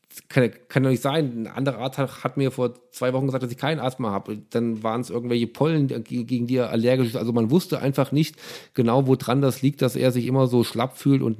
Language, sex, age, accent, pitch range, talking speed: German, male, 40-59, German, 120-140 Hz, 235 wpm